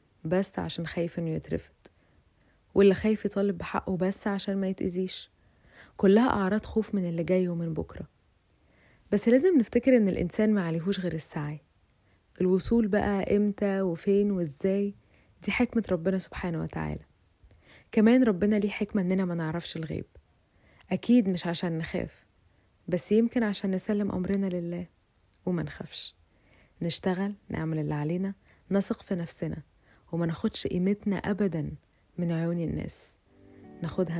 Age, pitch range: 20-39, 160-210 Hz